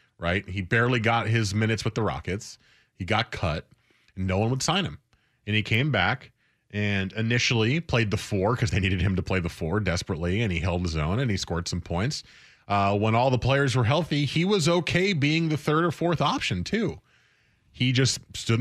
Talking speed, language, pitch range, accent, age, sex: 215 wpm, English, 100-135 Hz, American, 30-49, male